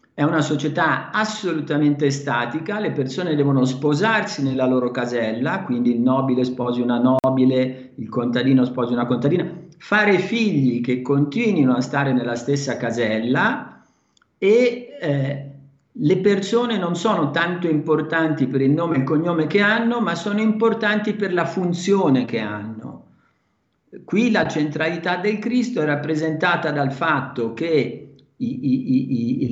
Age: 50-69